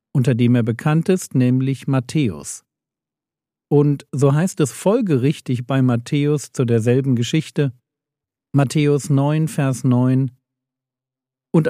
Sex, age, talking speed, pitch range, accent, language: male, 50-69, 115 wpm, 125-155 Hz, German, German